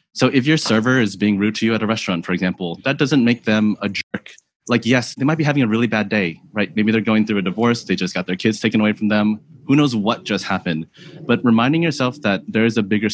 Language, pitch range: English, 90-115 Hz